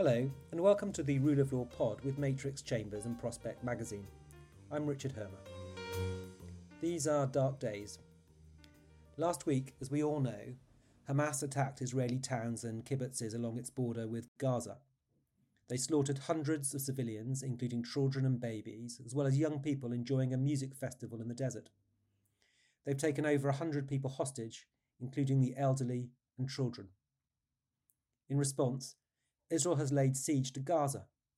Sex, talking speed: male, 150 wpm